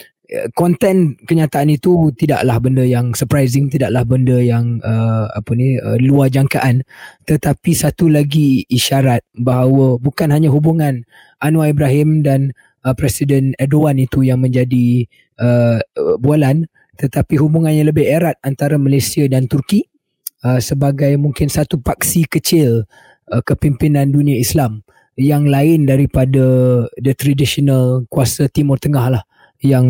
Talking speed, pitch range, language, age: 130 wpm, 130-150 Hz, Malay, 20-39